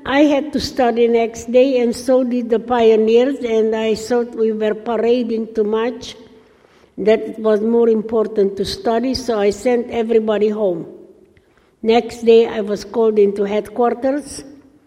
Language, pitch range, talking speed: English, 220-280 Hz, 155 wpm